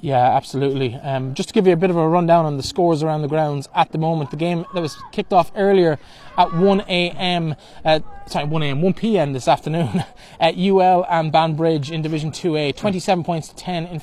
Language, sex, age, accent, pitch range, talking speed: English, male, 20-39, Irish, 150-175 Hz, 215 wpm